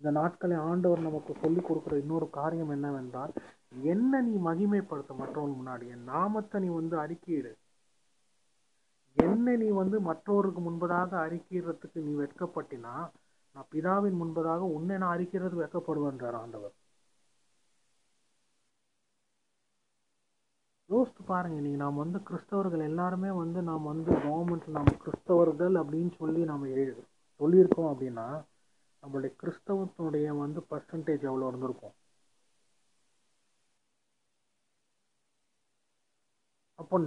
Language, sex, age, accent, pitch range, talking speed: Tamil, male, 30-49, native, 145-185 Hz, 95 wpm